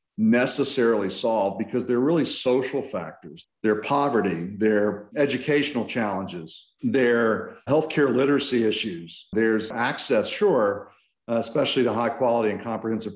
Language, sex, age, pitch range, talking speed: English, male, 50-69, 100-130 Hz, 115 wpm